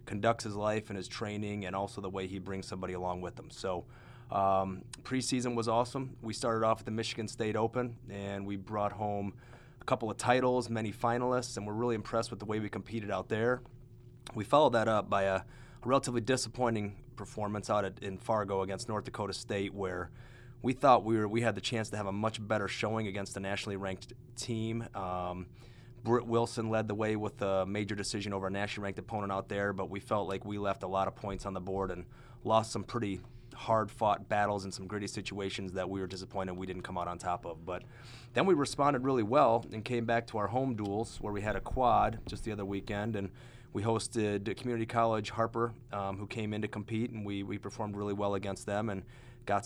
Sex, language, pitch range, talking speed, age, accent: male, English, 100-115 Hz, 220 wpm, 30-49, American